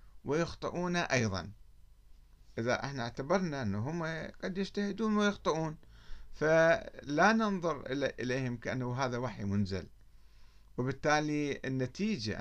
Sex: male